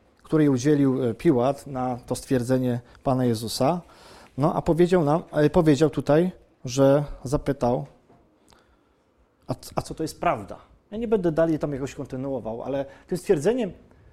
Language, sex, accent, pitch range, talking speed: Polish, male, native, 130-170 Hz, 135 wpm